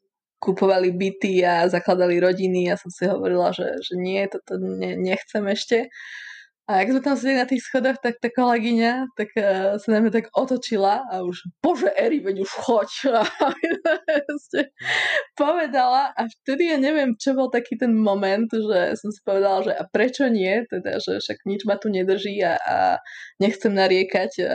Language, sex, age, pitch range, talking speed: Slovak, female, 20-39, 185-235 Hz, 170 wpm